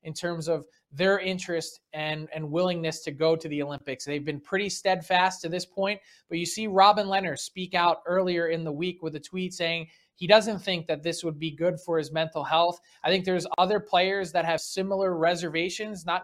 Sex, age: male, 20-39